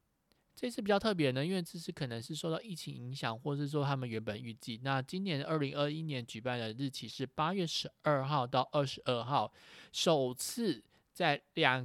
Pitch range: 120-155 Hz